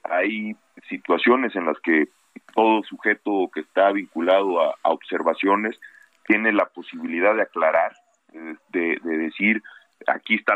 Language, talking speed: Spanish, 130 wpm